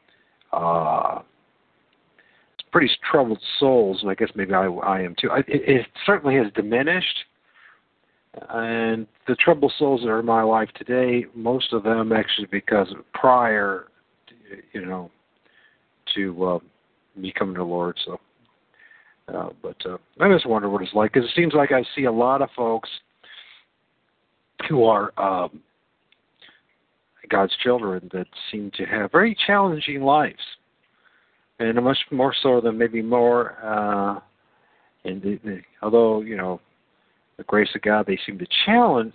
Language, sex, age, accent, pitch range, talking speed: English, male, 50-69, American, 95-125 Hz, 155 wpm